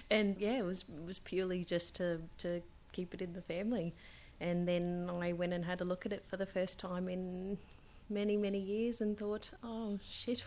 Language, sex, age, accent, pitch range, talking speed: English, female, 30-49, Australian, 155-190 Hz, 210 wpm